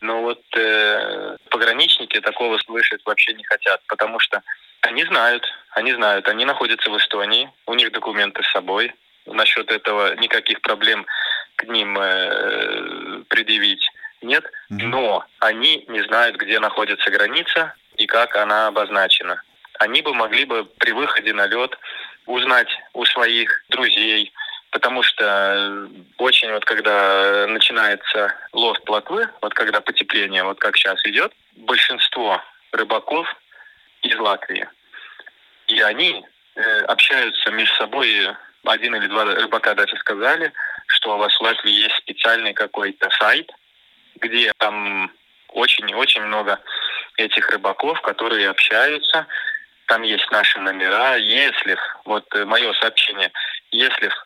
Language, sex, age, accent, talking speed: Russian, male, 20-39, native, 125 wpm